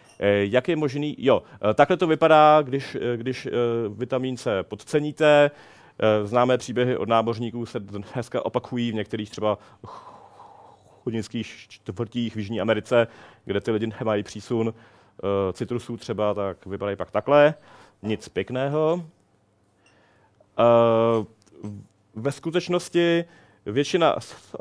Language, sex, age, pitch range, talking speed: Czech, male, 40-59, 105-135 Hz, 105 wpm